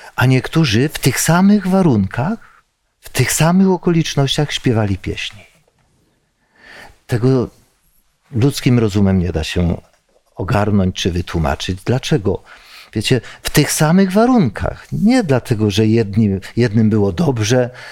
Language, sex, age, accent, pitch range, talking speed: Polish, male, 50-69, native, 105-135 Hz, 115 wpm